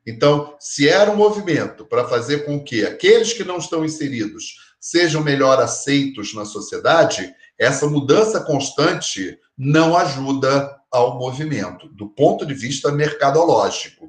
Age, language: 40-59, Portuguese